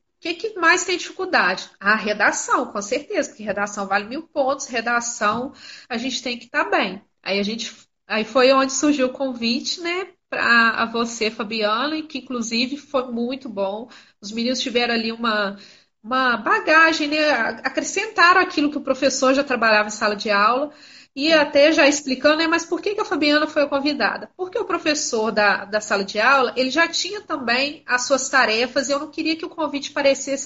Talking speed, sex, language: 185 wpm, female, Portuguese